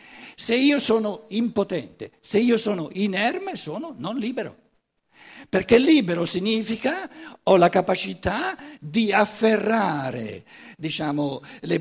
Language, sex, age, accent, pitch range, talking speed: Italian, male, 60-79, native, 165-235 Hz, 105 wpm